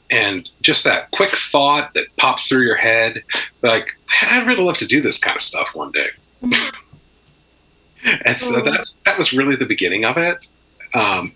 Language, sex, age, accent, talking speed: English, male, 40-59, American, 175 wpm